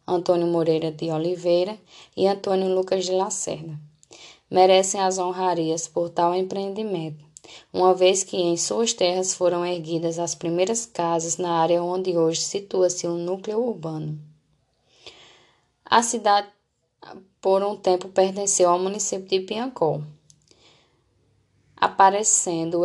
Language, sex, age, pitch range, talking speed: Portuguese, female, 10-29, 165-195 Hz, 120 wpm